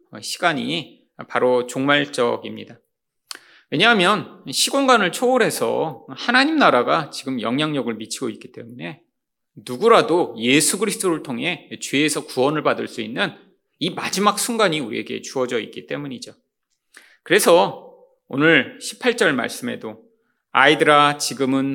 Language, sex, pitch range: Korean, male, 130-205 Hz